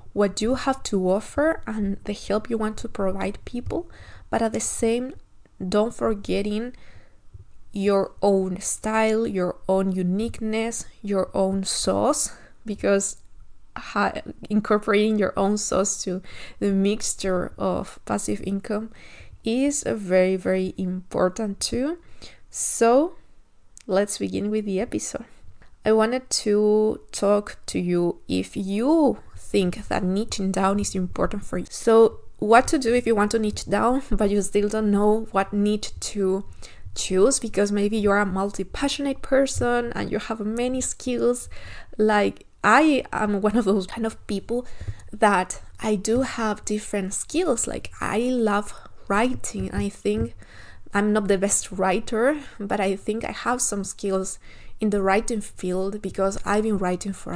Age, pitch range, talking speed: 20-39, 190-225 Hz, 145 wpm